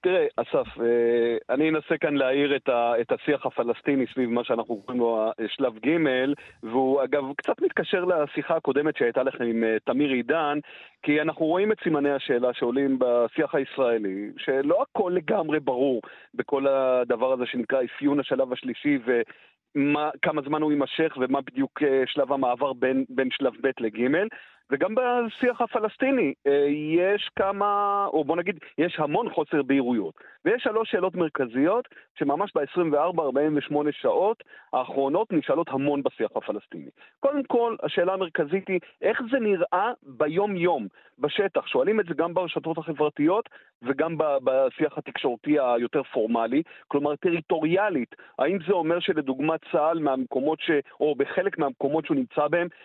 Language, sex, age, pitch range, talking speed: Hebrew, male, 40-59, 135-175 Hz, 135 wpm